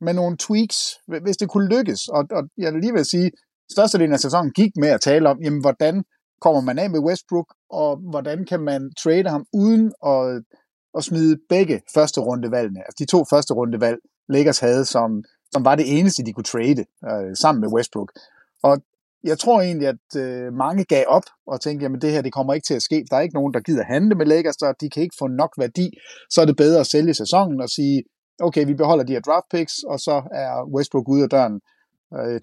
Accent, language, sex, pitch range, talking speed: native, Danish, male, 135-180 Hz, 230 wpm